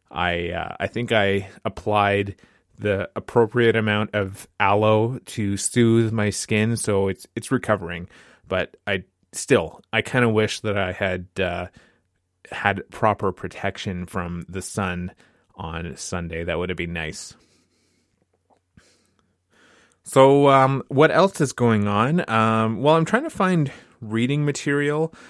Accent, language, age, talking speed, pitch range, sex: American, English, 20-39, 140 wpm, 100-120 Hz, male